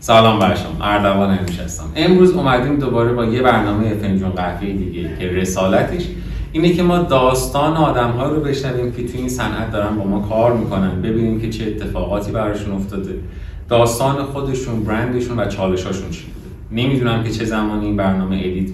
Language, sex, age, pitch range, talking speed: Persian, male, 30-49, 95-120 Hz, 165 wpm